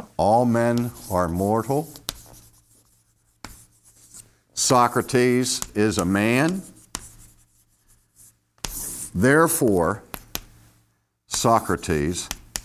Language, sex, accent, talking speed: English, male, American, 45 wpm